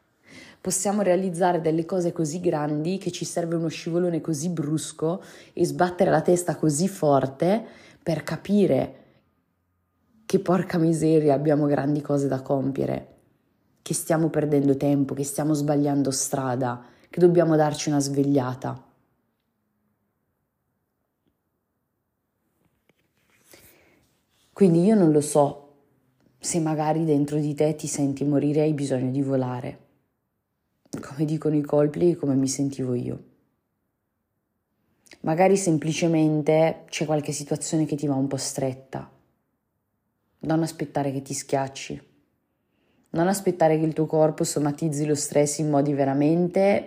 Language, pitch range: Italian, 140-165 Hz